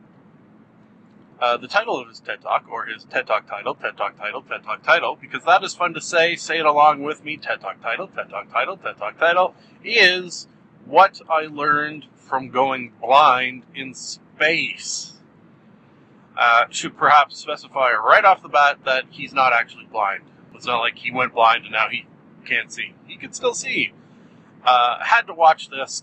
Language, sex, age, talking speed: English, male, 40-59, 185 wpm